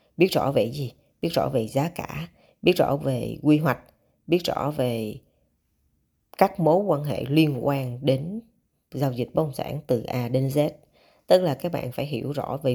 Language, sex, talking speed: Vietnamese, female, 190 wpm